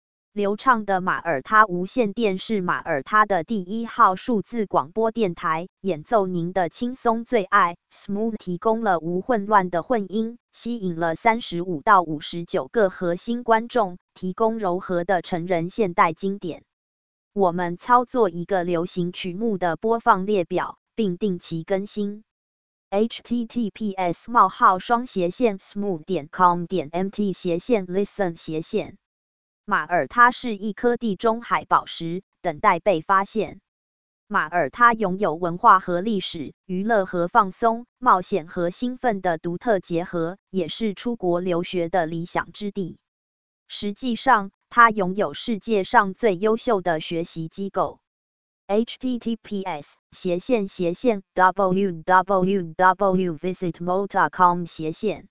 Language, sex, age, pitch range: English, female, 20-39, 175-220 Hz